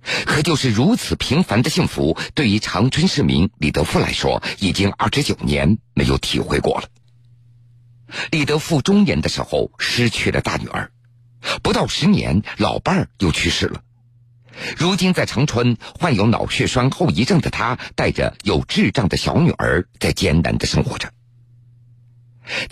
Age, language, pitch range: 50-69, Chinese, 115-135 Hz